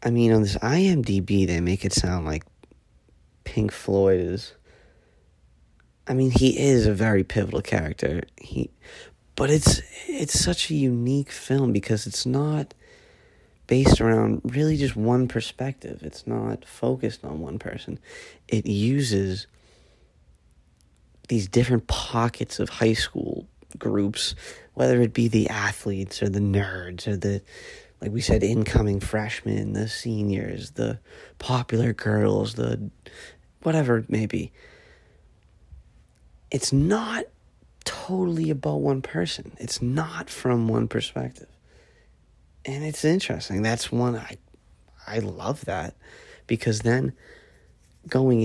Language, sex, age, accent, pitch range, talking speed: English, male, 30-49, American, 100-125 Hz, 125 wpm